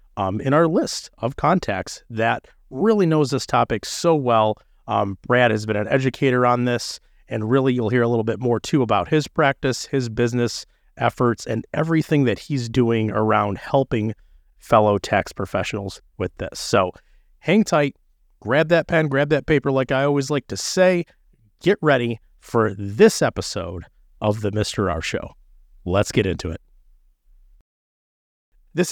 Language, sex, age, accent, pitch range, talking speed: English, male, 30-49, American, 115-175 Hz, 160 wpm